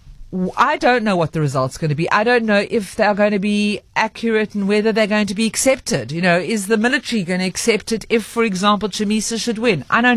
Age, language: 50-69, English